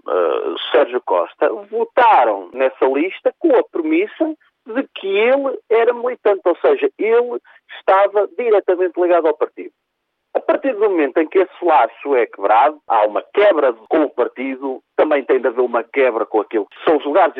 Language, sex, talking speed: Portuguese, male, 170 wpm